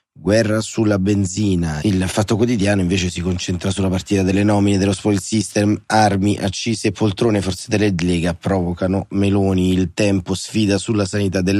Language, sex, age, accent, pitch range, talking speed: Italian, male, 30-49, native, 85-100 Hz, 155 wpm